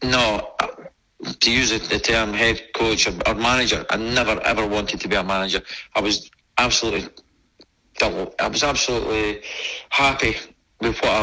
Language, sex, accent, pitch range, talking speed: English, male, British, 110-120 Hz, 145 wpm